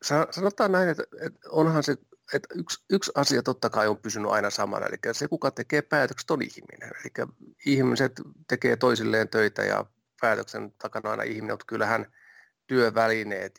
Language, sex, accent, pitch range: Finnish, male, native, 105-130 Hz